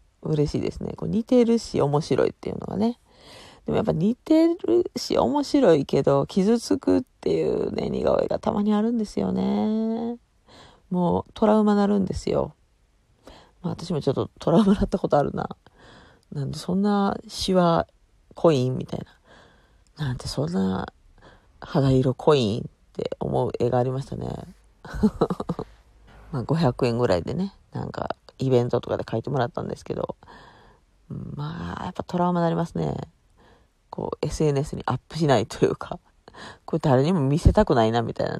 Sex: female